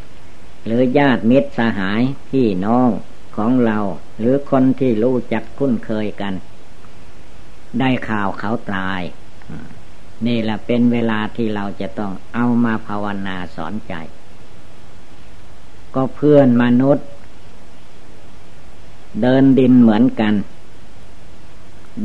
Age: 60-79